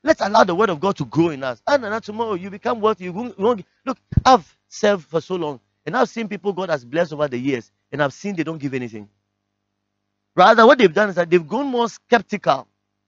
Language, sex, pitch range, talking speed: English, male, 140-220 Hz, 250 wpm